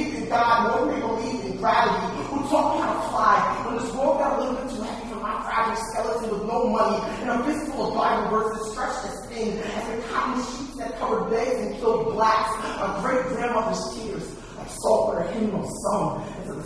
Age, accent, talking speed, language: 30-49, American, 210 wpm, English